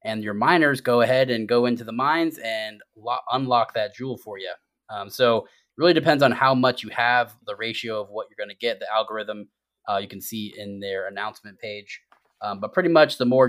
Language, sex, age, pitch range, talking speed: English, male, 20-39, 105-125 Hz, 225 wpm